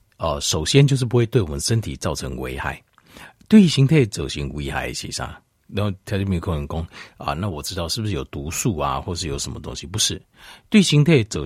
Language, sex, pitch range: Chinese, male, 75-120 Hz